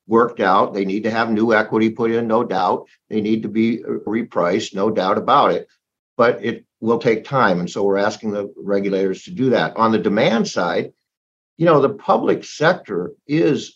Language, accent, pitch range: English, American, 105-125 Hz